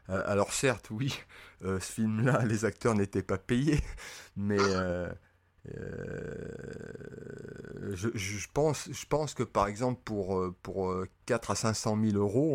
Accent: French